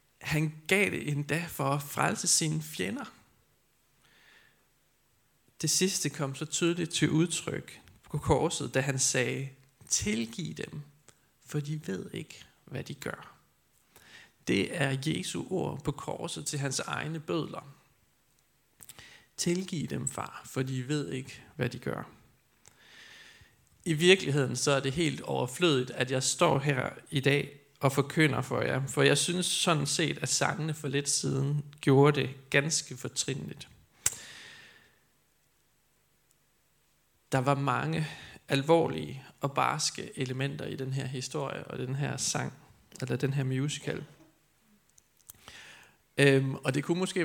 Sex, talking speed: male, 130 wpm